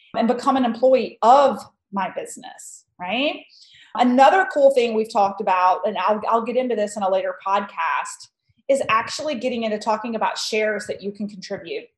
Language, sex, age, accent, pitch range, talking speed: English, female, 30-49, American, 215-285 Hz, 175 wpm